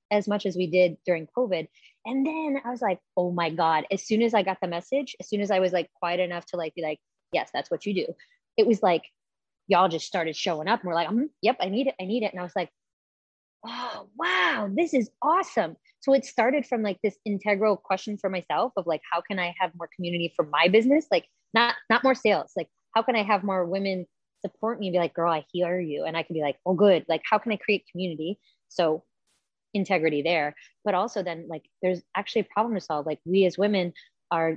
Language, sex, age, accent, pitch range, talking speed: English, female, 20-39, American, 170-210 Hz, 245 wpm